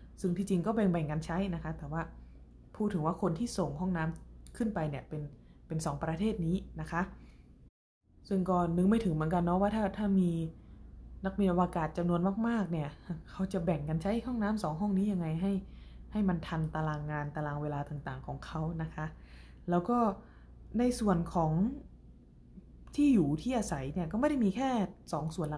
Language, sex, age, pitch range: Thai, female, 20-39, 155-200 Hz